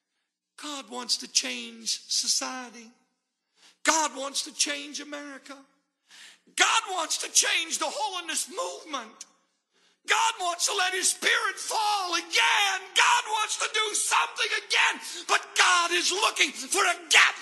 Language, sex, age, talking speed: English, male, 50-69, 130 wpm